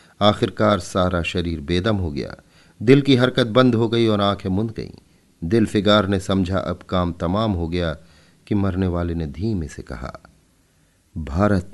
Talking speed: 170 wpm